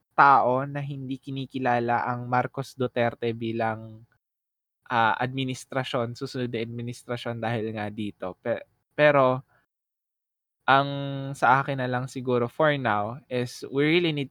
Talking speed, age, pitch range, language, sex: 120 wpm, 20-39, 120-135 Hz, Filipino, male